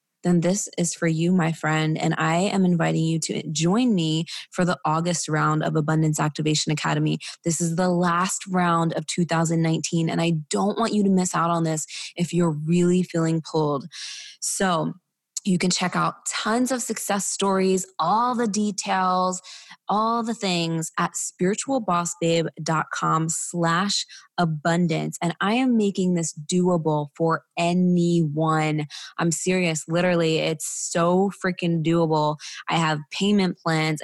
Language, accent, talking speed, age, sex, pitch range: English, American, 145 wpm, 20-39, female, 160-185 Hz